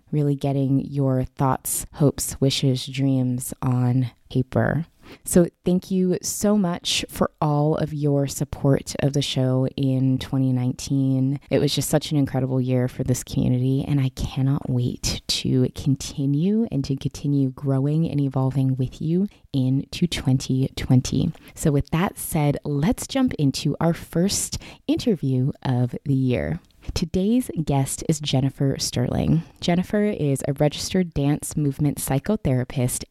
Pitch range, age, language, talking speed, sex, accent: 130-160 Hz, 20-39, English, 135 wpm, female, American